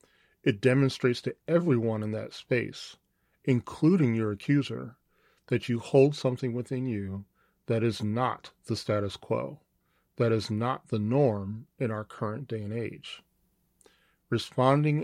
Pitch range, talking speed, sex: 105-135 Hz, 135 wpm, male